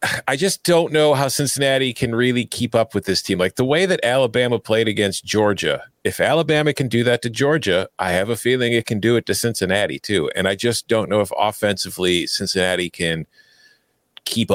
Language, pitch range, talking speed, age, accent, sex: English, 95-125 Hz, 200 wpm, 40-59, American, male